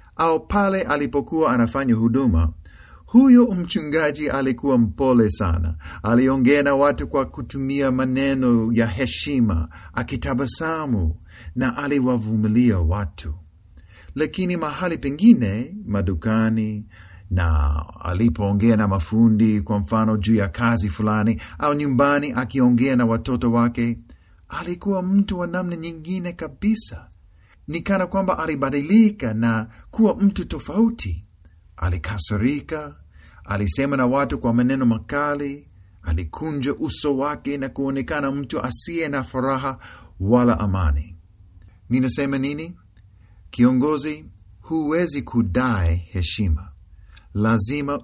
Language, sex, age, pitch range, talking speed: Swahili, male, 40-59, 95-145 Hz, 100 wpm